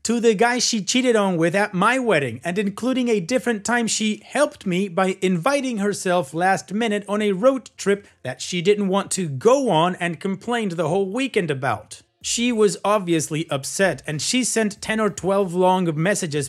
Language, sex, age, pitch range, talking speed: English, male, 30-49, 180-240 Hz, 190 wpm